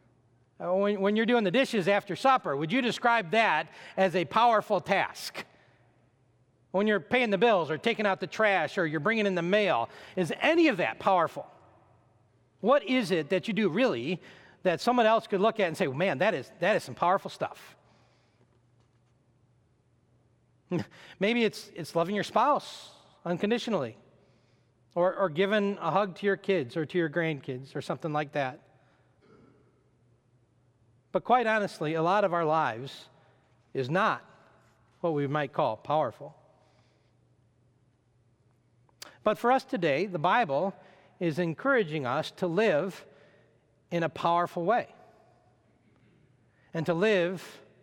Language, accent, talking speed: English, American, 145 wpm